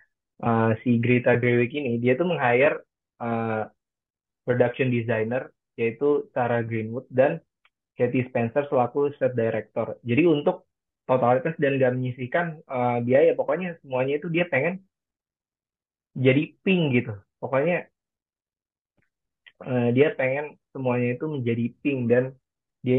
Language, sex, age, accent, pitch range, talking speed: Indonesian, male, 20-39, native, 115-135 Hz, 120 wpm